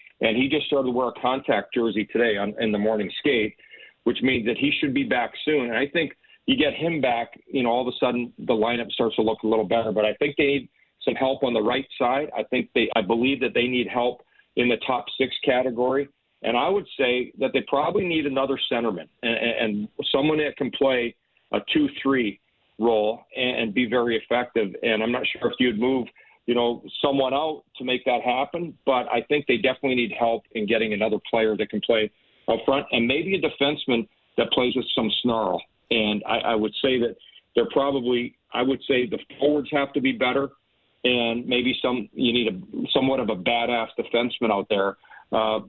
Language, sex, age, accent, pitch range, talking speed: English, male, 40-59, American, 115-135 Hz, 215 wpm